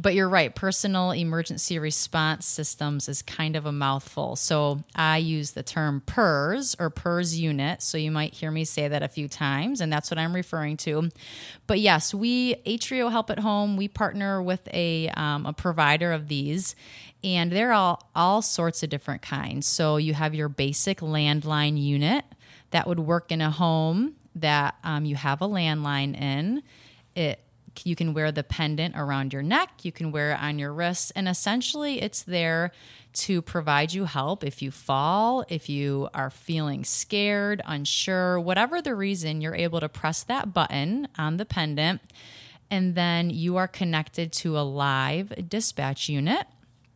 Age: 30-49